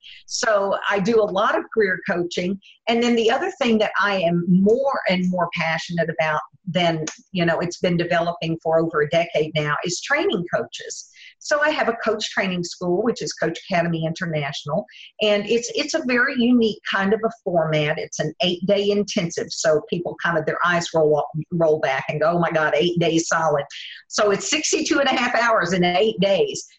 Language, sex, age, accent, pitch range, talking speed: English, female, 50-69, American, 165-215 Hz, 200 wpm